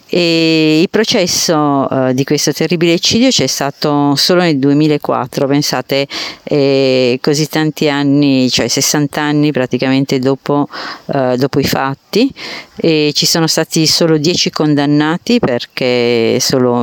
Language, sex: Italian, female